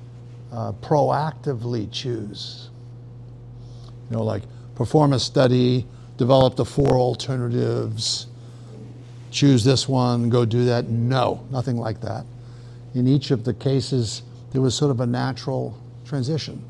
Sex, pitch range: male, 120-130 Hz